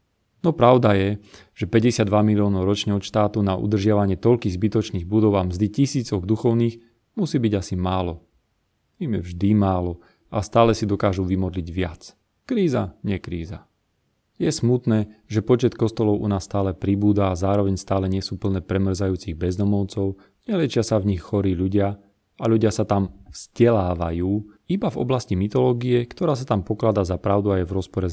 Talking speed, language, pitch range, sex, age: 155 wpm, Slovak, 95-115 Hz, male, 30-49